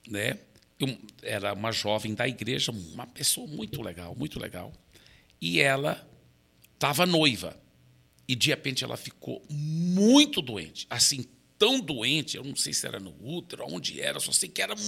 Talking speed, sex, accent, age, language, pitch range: 155 wpm, male, Brazilian, 60-79, Portuguese, 100-160 Hz